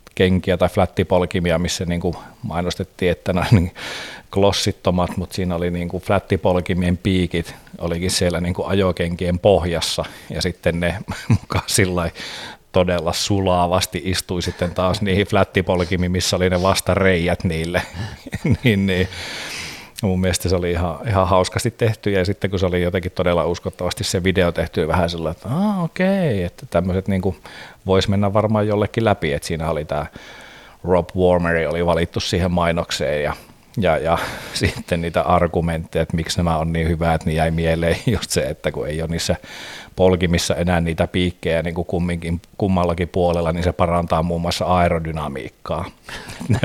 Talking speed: 145 wpm